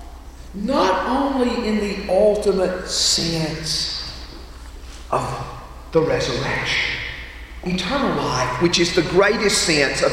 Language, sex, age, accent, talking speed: English, male, 50-69, American, 100 wpm